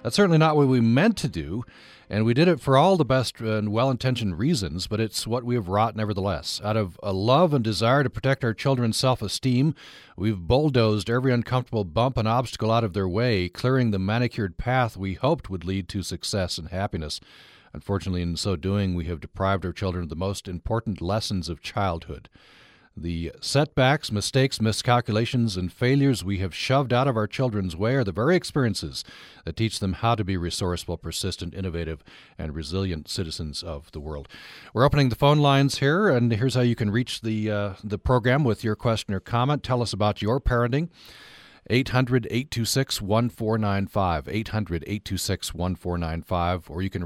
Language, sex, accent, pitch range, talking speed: English, male, American, 90-125 Hz, 180 wpm